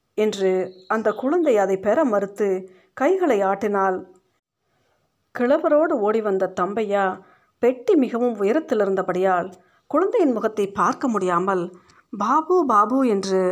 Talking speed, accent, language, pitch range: 95 wpm, native, Tamil, 185-245 Hz